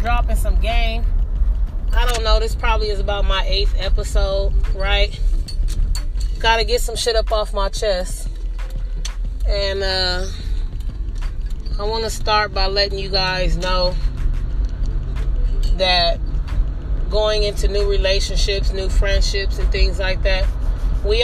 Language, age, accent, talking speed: English, 30-49, American, 125 wpm